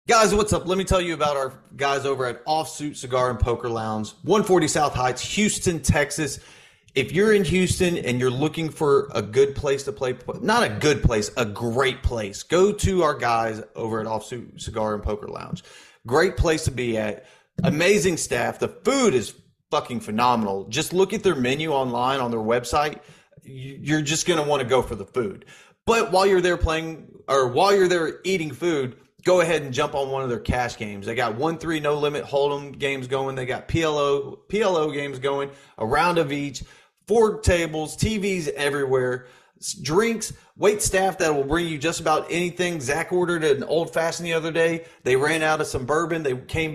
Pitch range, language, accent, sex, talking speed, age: 125-170 Hz, English, American, male, 200 wpm, 30-49